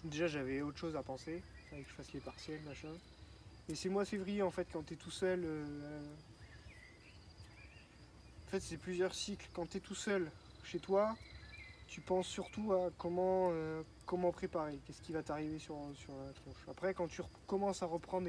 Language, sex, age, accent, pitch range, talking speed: French, male, 20-39, French, 150-185 Hz, 195 wpm